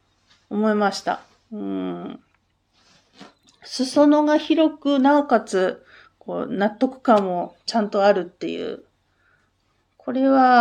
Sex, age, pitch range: female, 40-59, 205-315 Hz